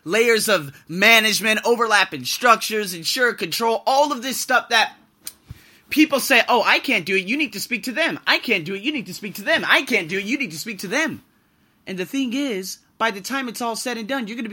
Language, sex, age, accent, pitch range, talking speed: English, male, 20-39, American, 190-250 Hz, 250 wpm